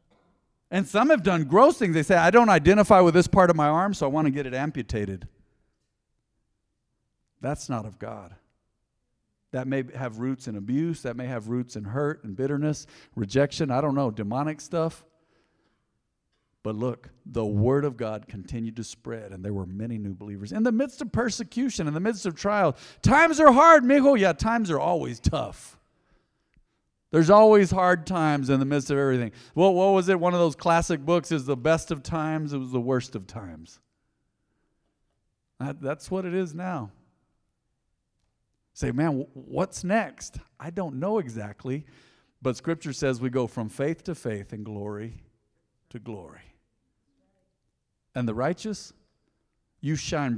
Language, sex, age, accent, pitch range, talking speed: English, male, 50-69, American, 115-175 Hz, 170 wpm